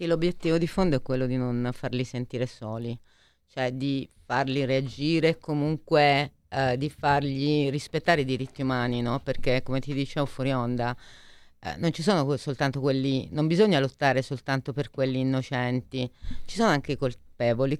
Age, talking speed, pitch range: 30-49, 160 wpm, 125-145 Hz